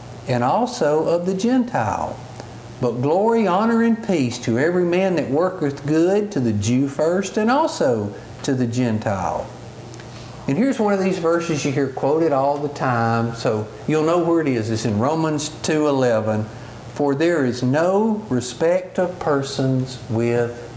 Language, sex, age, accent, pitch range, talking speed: English, male, 50-69, American, 115-155 Hz, 160 wpm